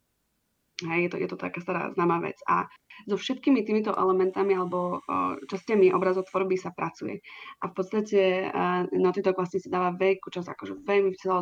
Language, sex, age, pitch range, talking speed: Slovak, female, 20-39, 180-195 Hz, 185 wpm